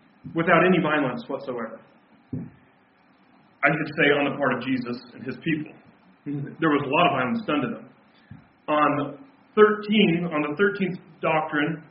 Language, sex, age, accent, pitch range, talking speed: English, male, 40-59, American, 145-190 Hz, 145 wpm